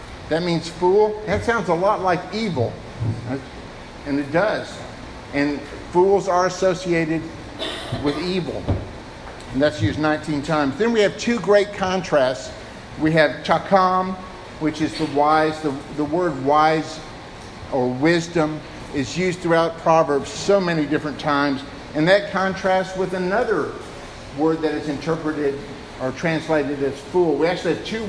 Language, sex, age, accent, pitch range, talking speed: English, male, 50-69, American, 140-180 Hz, 145 wpm